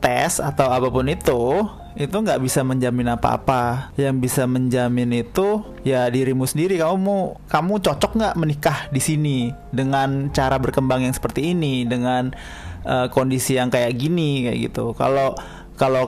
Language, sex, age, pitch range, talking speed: Indonesian, male, 20-39, 125-145 Hz, 150 wpm